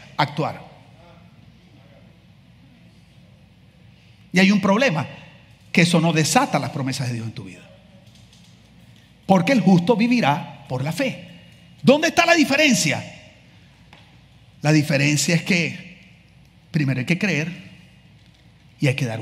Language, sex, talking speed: English, male, 120 wpm